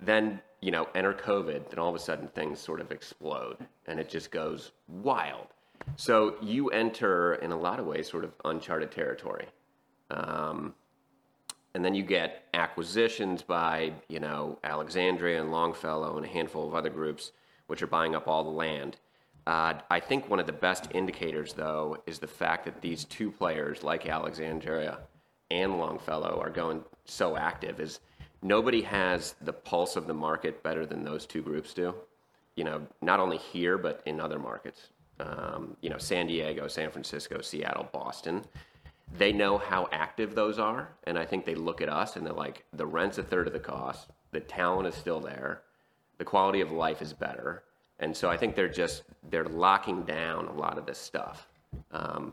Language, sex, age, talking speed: English, male, 30-49, 185 wpm